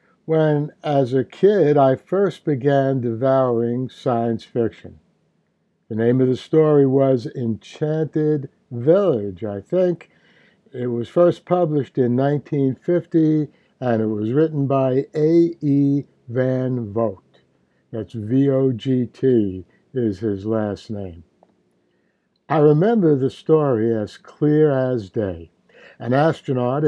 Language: English